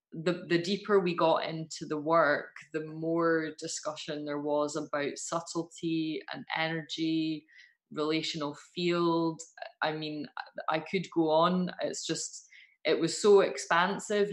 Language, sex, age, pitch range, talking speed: English, female, 20-39, 155-175 Hz, 130 wpm